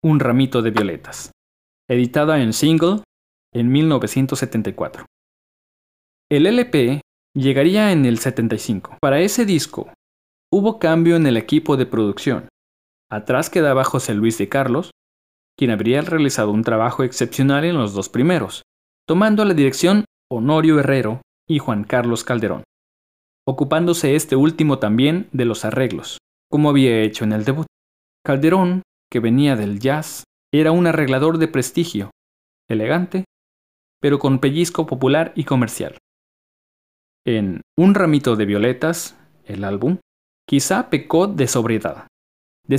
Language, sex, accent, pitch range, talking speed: Spanish, male, Mexican, 115-160 Hz, 130 wpm